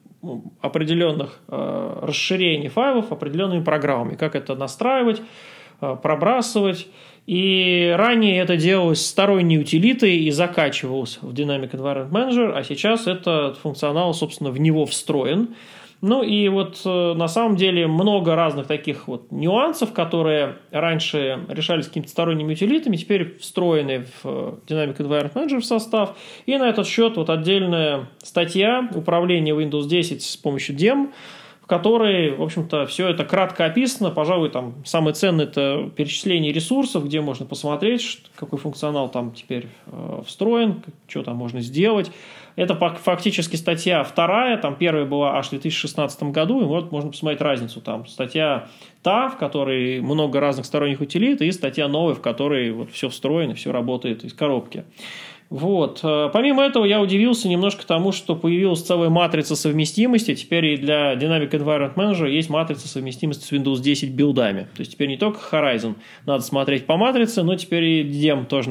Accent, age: native, 30-49